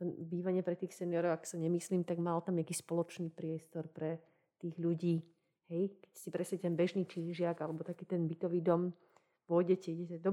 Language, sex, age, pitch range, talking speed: Slovak, female, 30-49, 170-185 Hz, 185 wpm